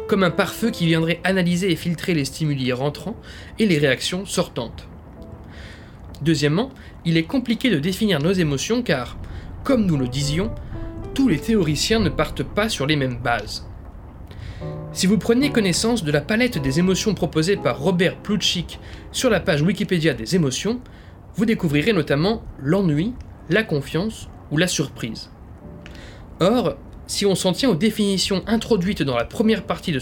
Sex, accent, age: male, French, 20-39